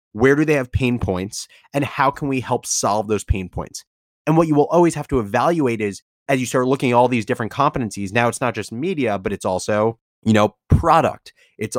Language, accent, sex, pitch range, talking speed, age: English, American, male, 115-150 Hz, 230 wpm, 30-49